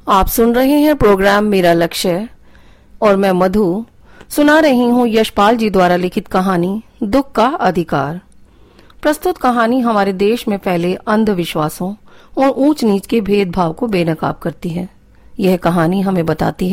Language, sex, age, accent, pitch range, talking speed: Hindi, female, 40-59, native, 175-235 Hz, 145 wpm